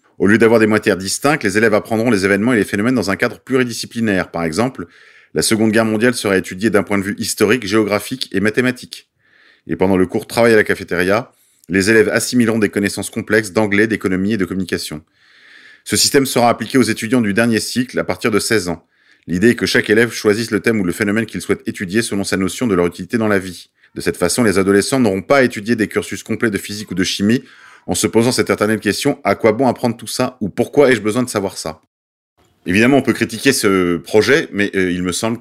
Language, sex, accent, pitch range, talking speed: French, male, French, 95-120 Hz, 240 wpm